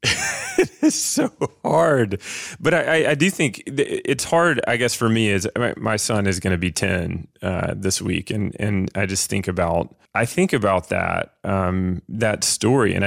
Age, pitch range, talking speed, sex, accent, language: 20-39, 95-115 Hz, 185 wpm, male, American, English